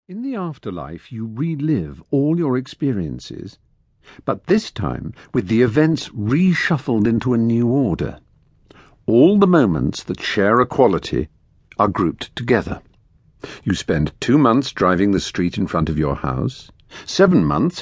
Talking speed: 145 wpm